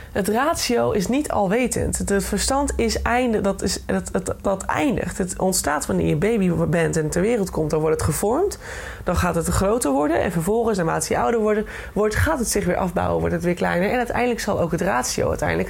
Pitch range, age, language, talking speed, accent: 175-235 Hz, 20-39, Dutch, 215 wpm, Dutch